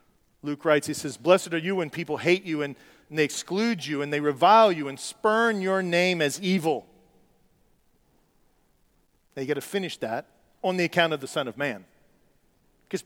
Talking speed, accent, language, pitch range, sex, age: 190 wpm, American, English, 175-235 Hz, male, 40-59